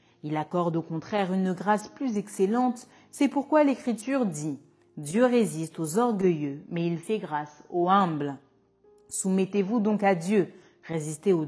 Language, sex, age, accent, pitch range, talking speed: French, female, 40-59, French, 160-220 Hz, 145 wpm